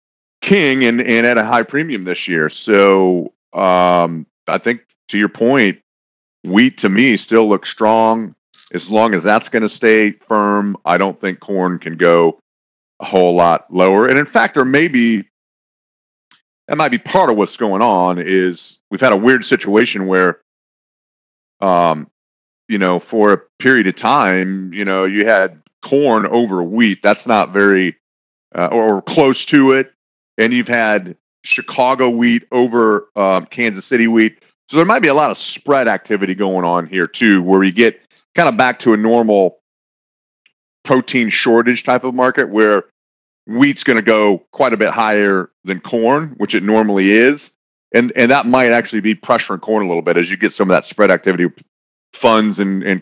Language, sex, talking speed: English, male, 180 wpm